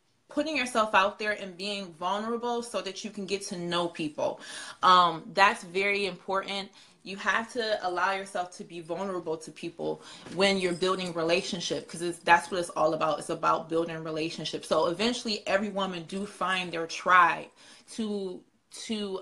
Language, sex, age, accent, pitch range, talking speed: English, female, 20-39, American, 170-200 Hz, 165 wpm